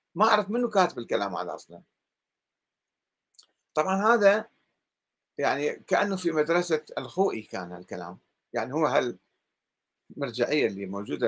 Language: Arabic